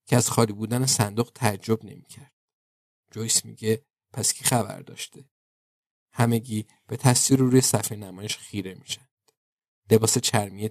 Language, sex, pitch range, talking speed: Persian, male, 105-125 Hz, 130 wpm